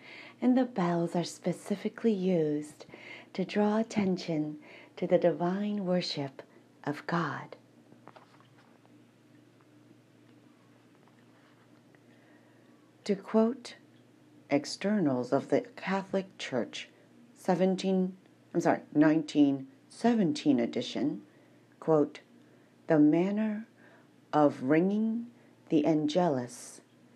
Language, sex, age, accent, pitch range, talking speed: English, female, 40-59, American, 145-200 Hz, 75 wpm